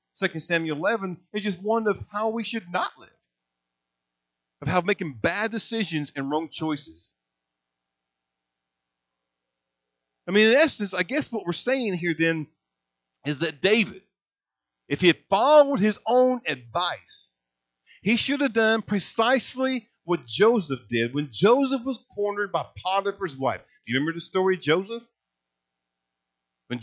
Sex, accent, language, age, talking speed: male, American, English, 50-69, 145 wpm